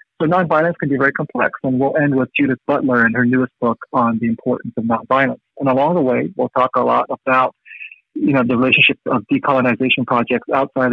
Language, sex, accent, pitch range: English, male, American, 120-140 Hz